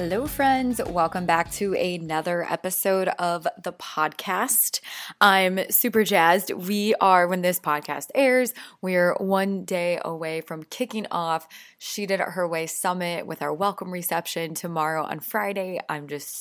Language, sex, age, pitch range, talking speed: English, female, 20-39, 165-200 Hz, 150 wpm